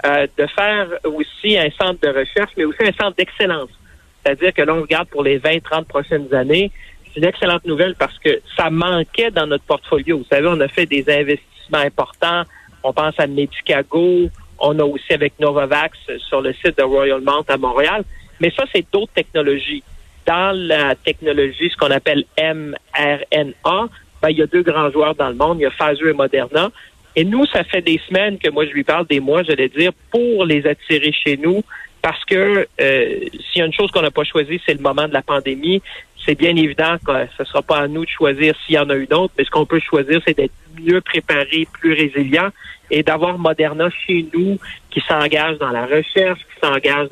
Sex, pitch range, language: male, 145-175 Hz, French